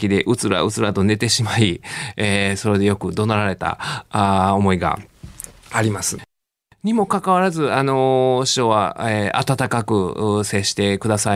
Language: Japanese